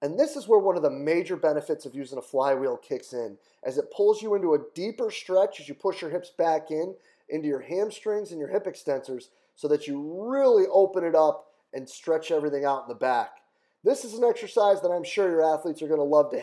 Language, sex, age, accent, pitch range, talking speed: English, male, 30-49, American, 130-190 Hz, 240 wpm